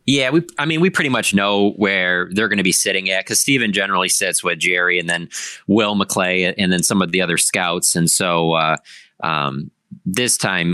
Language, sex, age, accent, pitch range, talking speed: English, male, 30-49, American, 85-100 Hz, 210 wpm